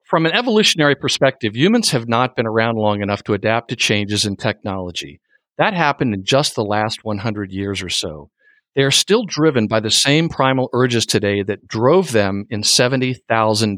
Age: 50-69